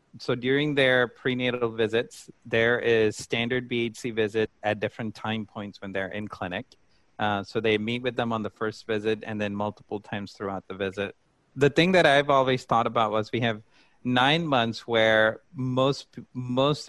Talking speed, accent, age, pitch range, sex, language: 180 wpm, American, 30-49, 105-125 Hz, male, English